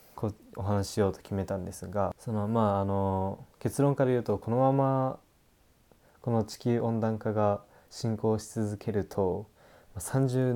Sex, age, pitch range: male, 20-39, 100-120 Hz